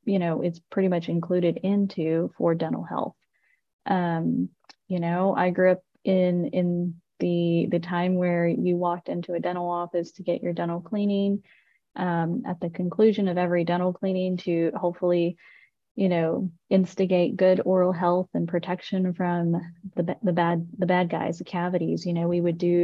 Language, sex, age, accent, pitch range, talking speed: English, female, 20-39, American, 170-185 Hz, 170 wpm